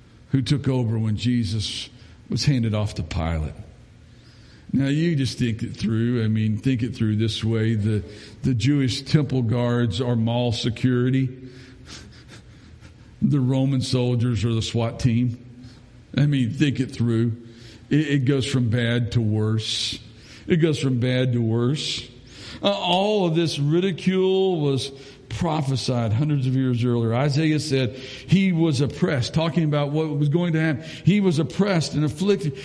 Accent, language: American, English